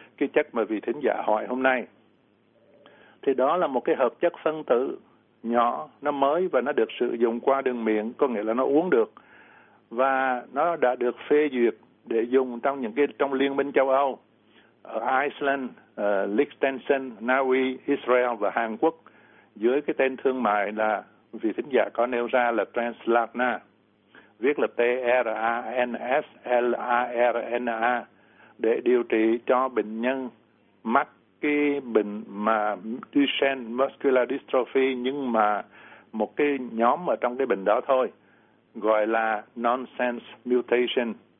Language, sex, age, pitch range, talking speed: Vietnamese, male, 60-79, 115-135 Hz, 150 wpm